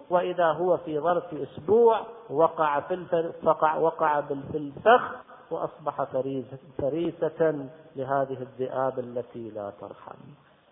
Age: 50-69